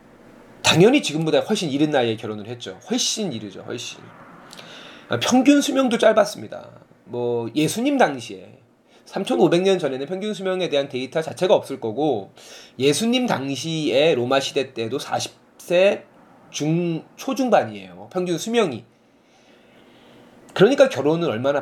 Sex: male